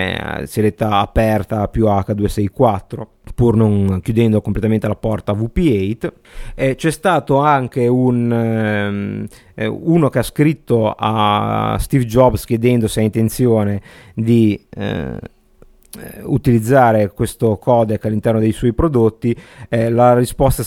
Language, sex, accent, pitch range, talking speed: Italian, male, native, 110-125 Hz, 120 wpm